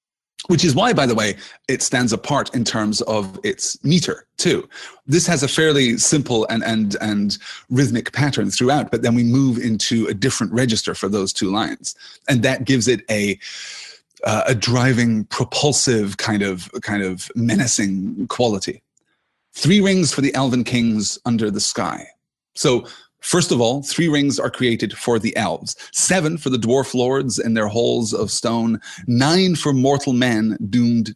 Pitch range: 115-140 Hz